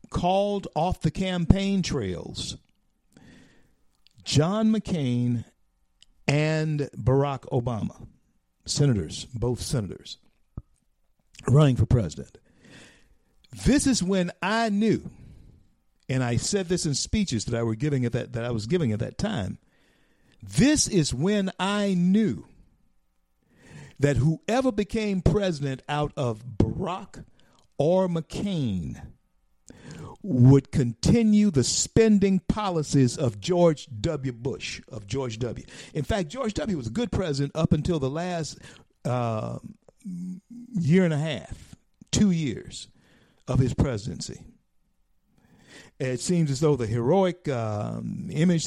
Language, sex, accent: English, male, American